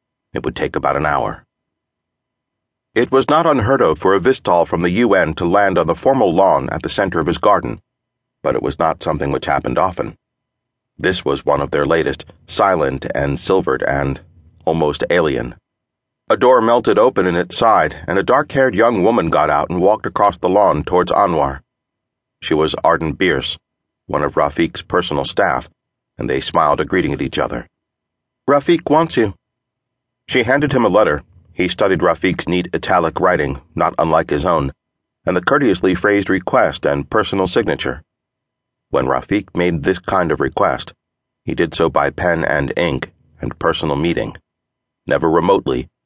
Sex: male